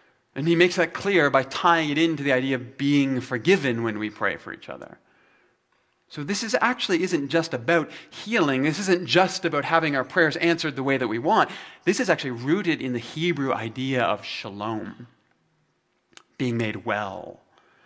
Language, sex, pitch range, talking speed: English, male, 125-170 Hz, 180 wpm